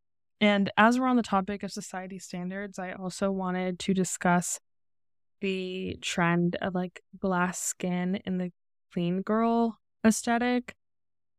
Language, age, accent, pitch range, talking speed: English, 10-29, American, 180-215 Hz, 130 wpm